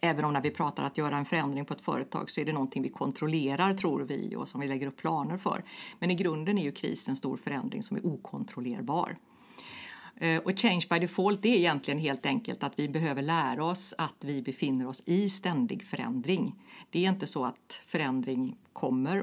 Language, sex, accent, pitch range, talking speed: Swedish, female, native, 150-200 Hz, 210 wpm